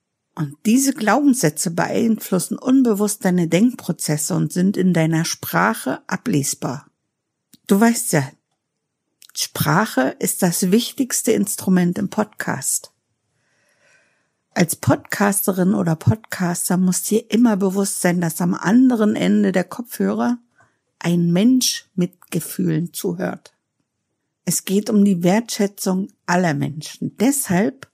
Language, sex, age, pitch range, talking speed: German, female, 50-69, 175-220 Hz, 110 wpm